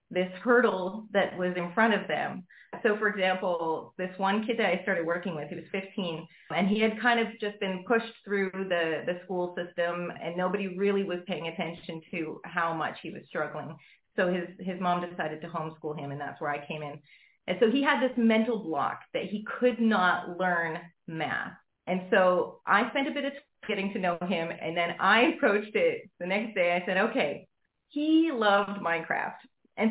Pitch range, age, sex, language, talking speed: 175-230 Hz, 30-49, female, English, 205 wpm